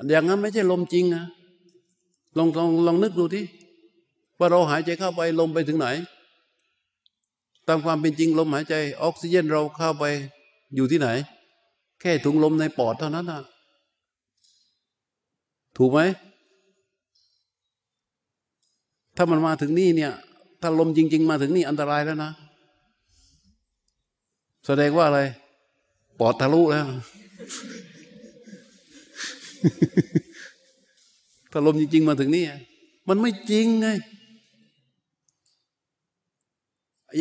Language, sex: Thai, male